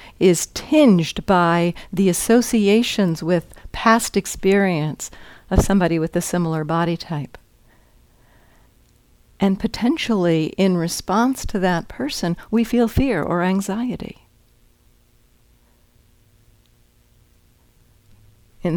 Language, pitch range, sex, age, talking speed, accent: English, 115-180 Hz, female, 60-79, 90 wpm, American